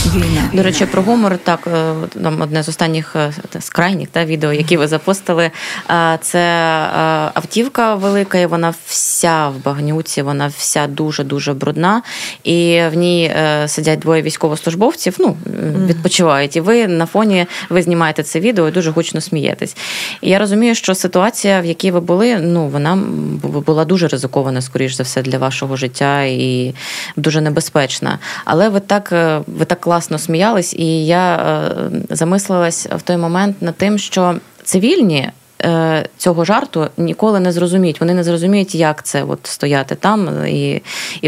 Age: 20-39